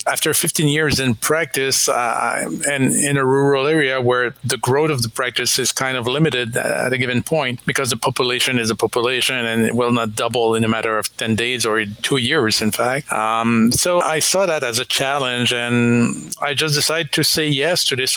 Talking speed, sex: 210 wpm, male